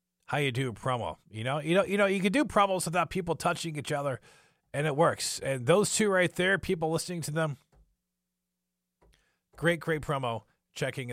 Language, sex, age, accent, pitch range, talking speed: English, male, 40-59, American, 120-160 Hz, 195 wpm